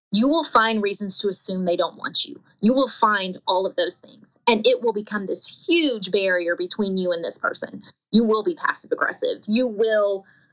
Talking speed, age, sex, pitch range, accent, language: 205 wpm, 20-39, female, 190-250 Hz, American, English